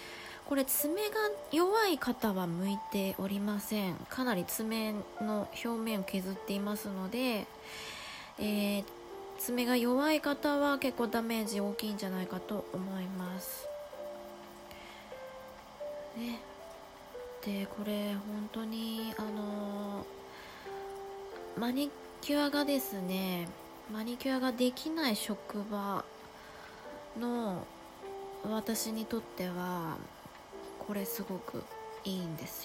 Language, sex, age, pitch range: Japanese, female, 20-39, 195-280 Hz